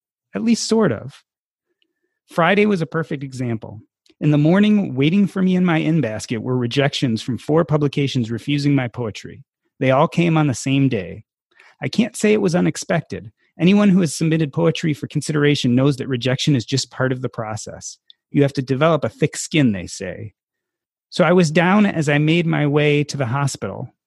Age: 30-49